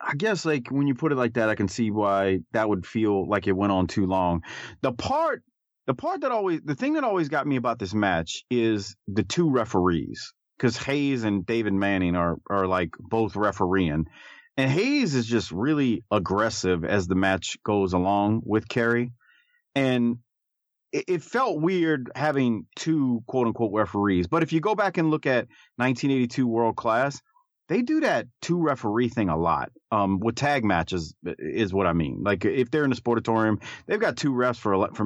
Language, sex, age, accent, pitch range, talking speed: English, male, 30-49, American, 100-145 Hz, 190 wpm